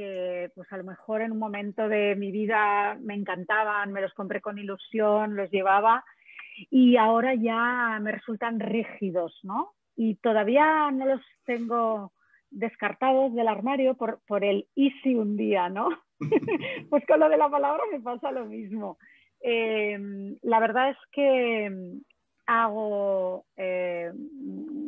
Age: 30-49